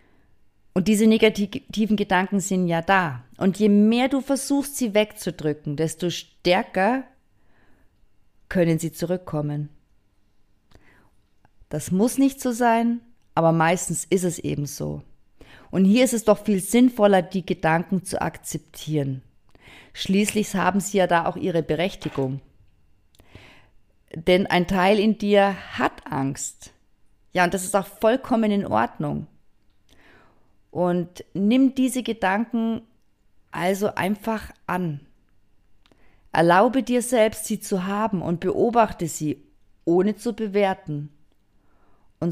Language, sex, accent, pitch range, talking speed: German, female, German, 125-210 Hz, 120 wpm